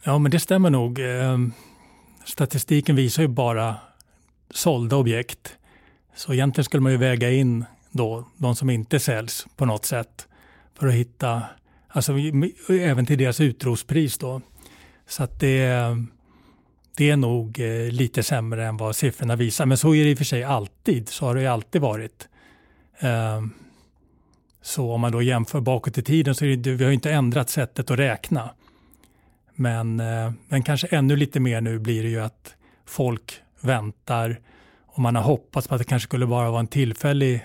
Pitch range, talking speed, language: 115-135 Hz, 170 wpm, Swedish